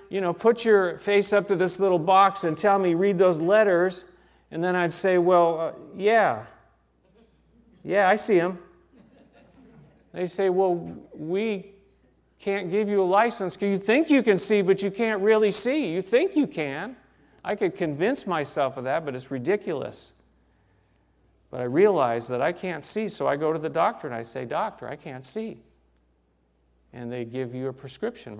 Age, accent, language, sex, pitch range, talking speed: 40-59, American, English, male, 130-200 Hz, 180 wpm